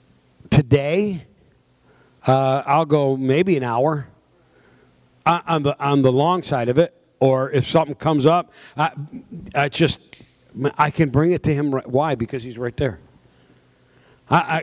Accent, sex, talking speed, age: American, male, 150 wpm, 50-69